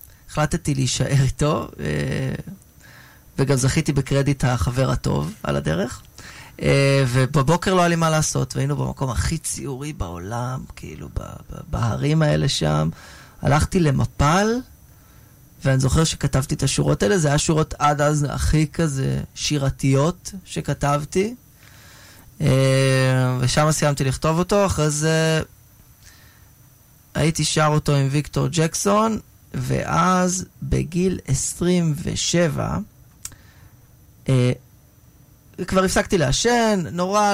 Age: 20-39